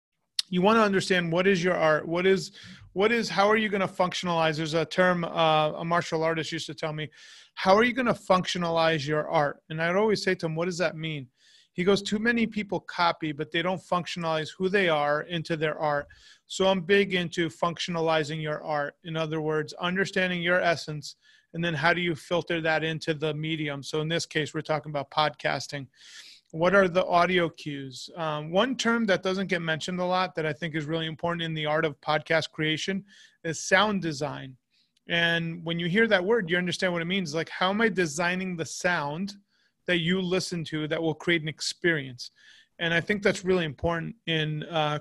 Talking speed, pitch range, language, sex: 210 wpm, 155-185 Hz, English, male